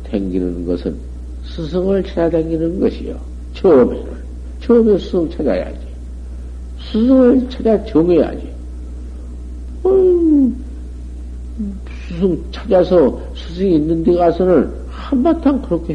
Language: Korean